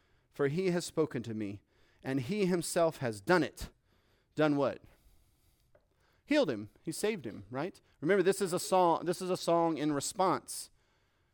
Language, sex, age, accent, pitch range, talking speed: English, male, 40-59, American, 115-160 Hz, 165 wpm